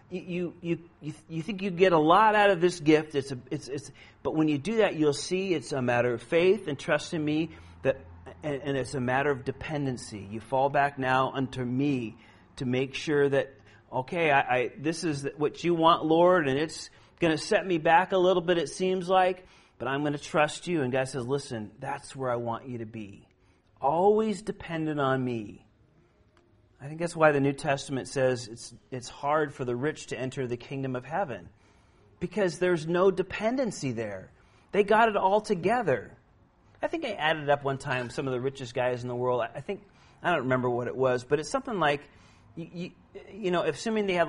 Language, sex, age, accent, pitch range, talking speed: Finnish, male, 40-59, American, 125-170 Hz, 215 wpm